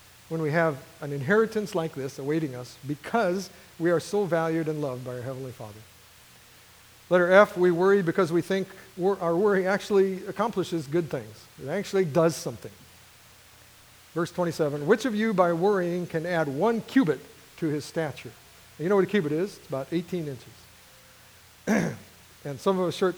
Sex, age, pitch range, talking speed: male, 50-69, 135-185 Hz, 170 wpm